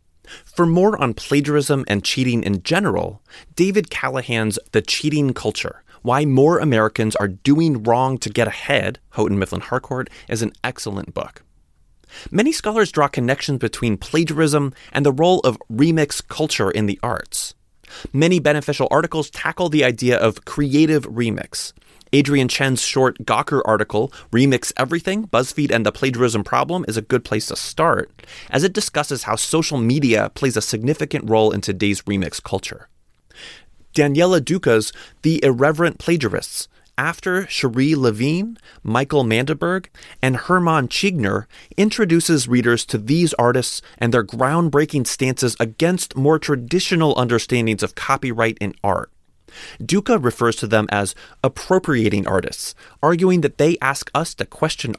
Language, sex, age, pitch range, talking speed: English, male, 30-49, 115-155 Hz, 140 wpm